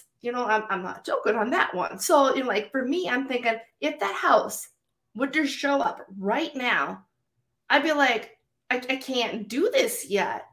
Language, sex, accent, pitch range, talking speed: English, female, American, 190-235 Hz, 200 wpm